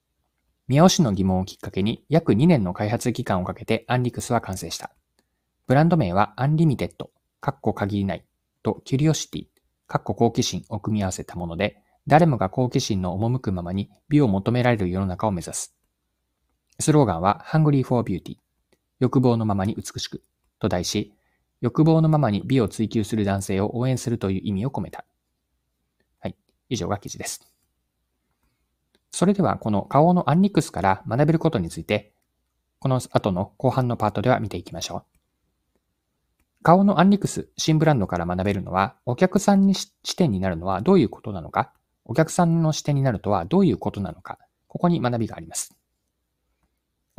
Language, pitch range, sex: Japanese, 95-145 Hz, male